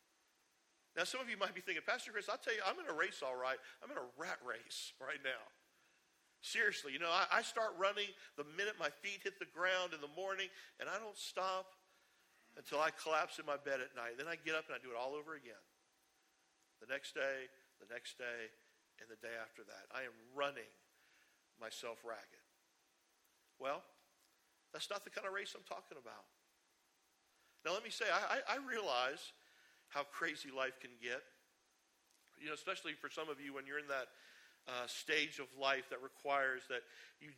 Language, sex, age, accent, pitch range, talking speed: English, male, 50-69, American, 135-170 Hz, 195 wpm